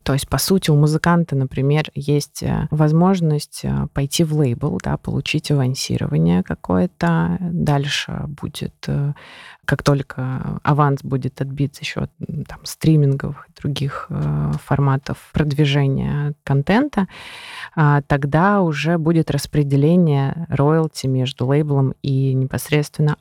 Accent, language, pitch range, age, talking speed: native, Russian, 140-170 Hz, 20-39, 105 wpm